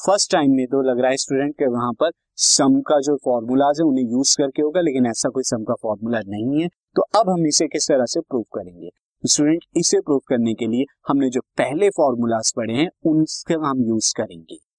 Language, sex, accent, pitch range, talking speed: Hindi, male, native, 125-170 Hz, 215 wpm